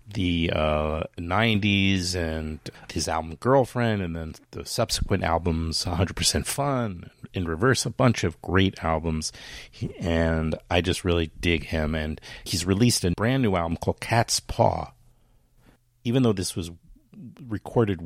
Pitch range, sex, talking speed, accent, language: 85-110 Hz, male, 145 wpm, American, English